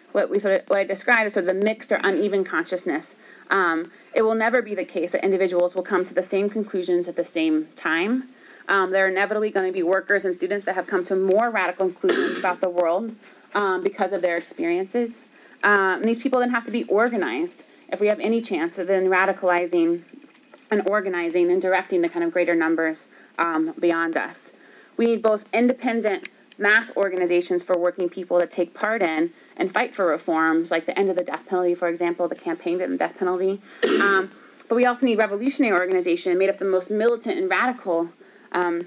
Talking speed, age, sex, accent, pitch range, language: 210 wpm, 30-49, female, American, 180-225 Hz, English